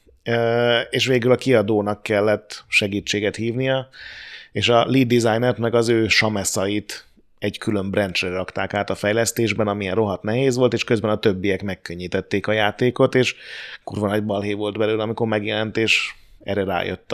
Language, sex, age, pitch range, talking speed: Hungarian, male, 30-49, 100-115 Hz, 160 wpm